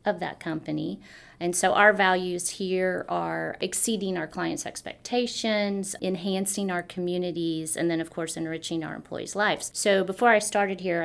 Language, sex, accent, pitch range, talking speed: English, female, American, 165-205 Hz, 160 wpm